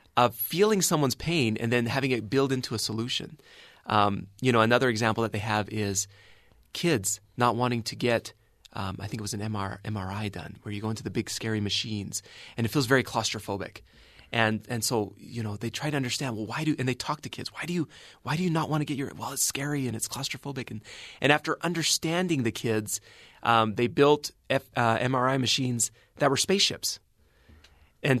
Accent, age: American, 30-49